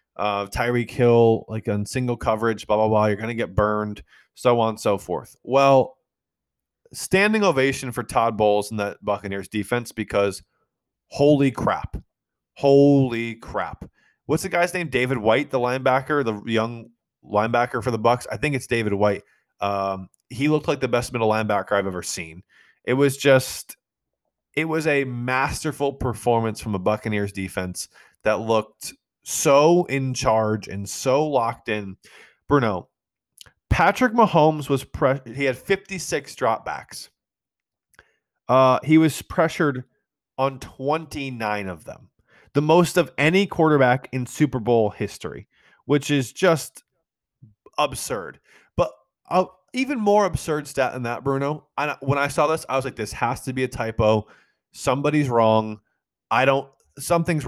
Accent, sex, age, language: American, male, 20-39, English